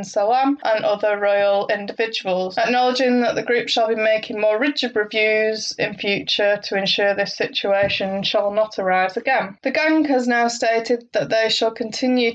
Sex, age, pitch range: female, 20-39, 210-250 Hz